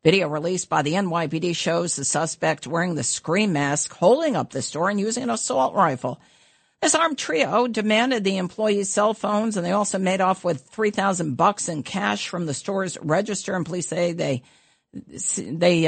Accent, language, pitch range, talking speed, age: American, English, 155-205 Hz, 180 wpm, 50-69